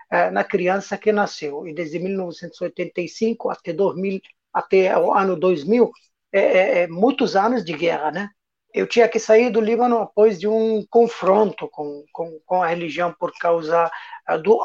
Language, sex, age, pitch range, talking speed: Portuguese, male, 50-69, 165-200 Hz, 155 wpm